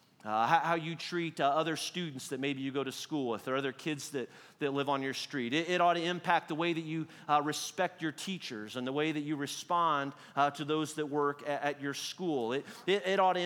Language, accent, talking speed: English, American, 250 wpm